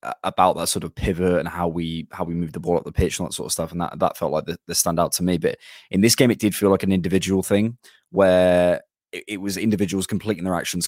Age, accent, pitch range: 20-39, British, 85-95 Hz